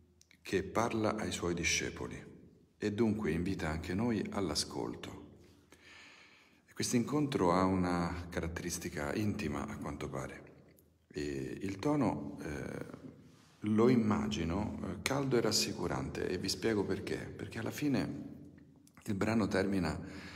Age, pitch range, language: 50-69, 80-100 Hz, Italian